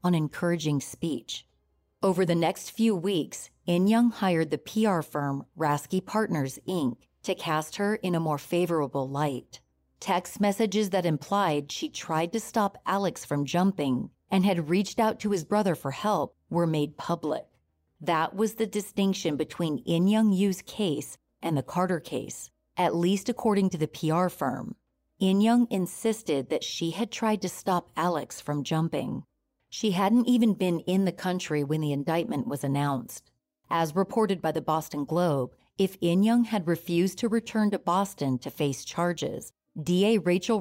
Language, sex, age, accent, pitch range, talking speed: English, female, 40-59, American, 155-205 Hz, 165 wpm